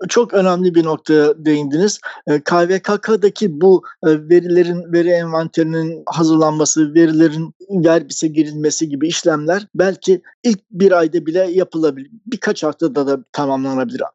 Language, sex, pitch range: Turkish, male, 155-185 Hz